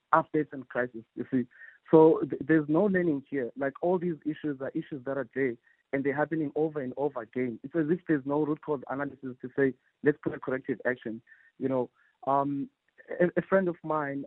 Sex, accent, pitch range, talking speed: male, South African, 130-155 Hz, 210 wpm